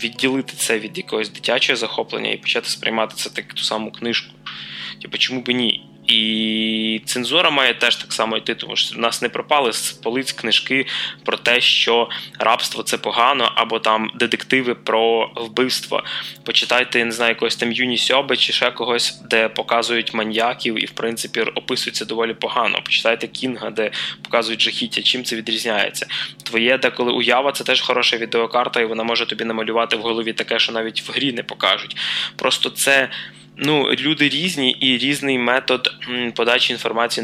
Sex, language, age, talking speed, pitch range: male, Russian, 20-39, 170 wpm, 110-125 Hz